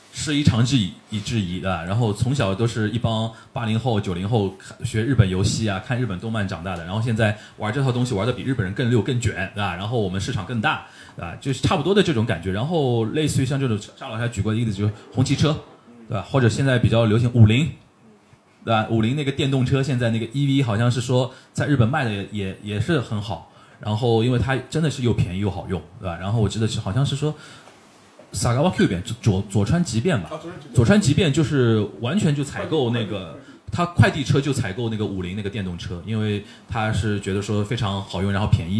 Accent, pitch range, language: native, 100-130 Hz, Chinese